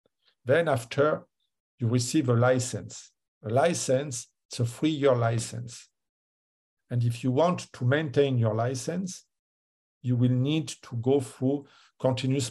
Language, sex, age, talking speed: English, male, 50-69, 130 wpm